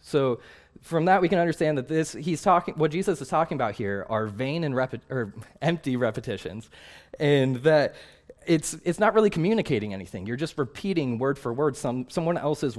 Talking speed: 190 wpm